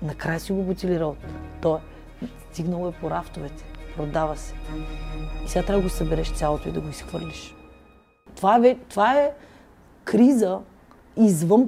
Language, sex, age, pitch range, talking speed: Bulgarian, female, 30-49, 160-195 Hz, 145 wpm